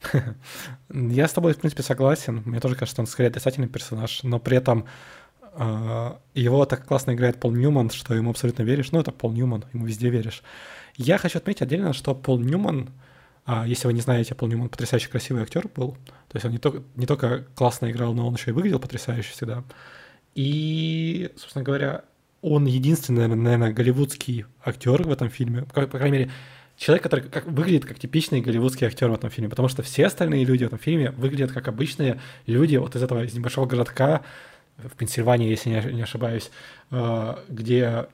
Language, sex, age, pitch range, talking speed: Russian, male, 20-39, 120-140 Hz, 190 wpm